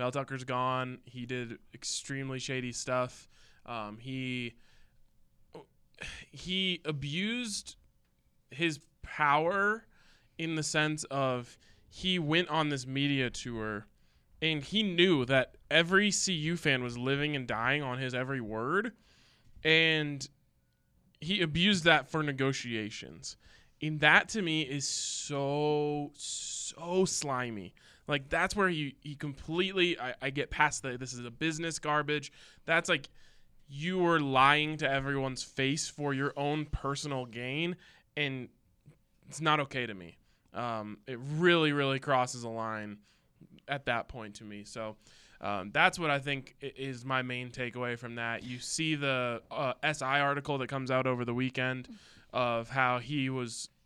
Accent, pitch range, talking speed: American, 125-155 Hz, 140 wpm